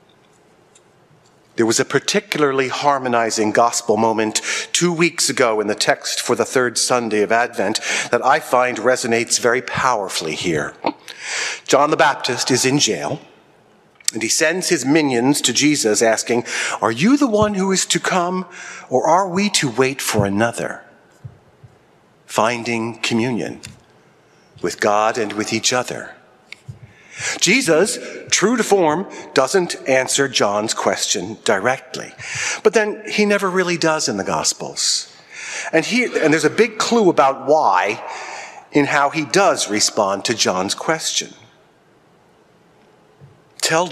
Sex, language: male, English